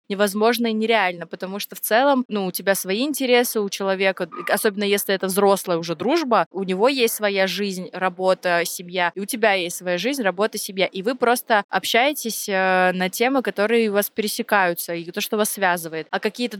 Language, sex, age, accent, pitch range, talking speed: Russian, female, 20-39, native, 185-220 Hz, 190 wpm